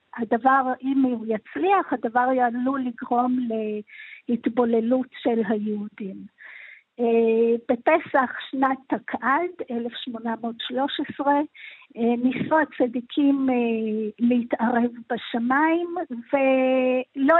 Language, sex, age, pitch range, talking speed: Hebrew, female, 50-69, 235-295 Hz, 65 wpm